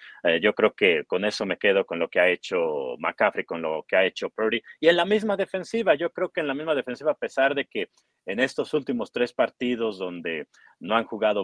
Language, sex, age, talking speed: Spanish, male, 30-49, 230 wpm